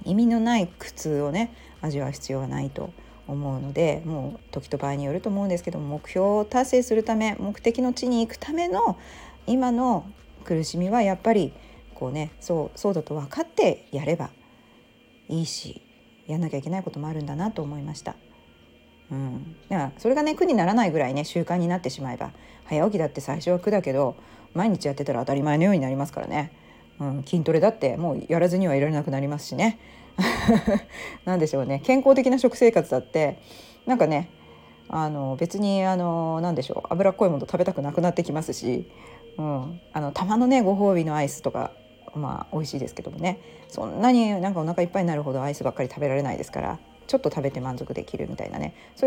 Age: 40-59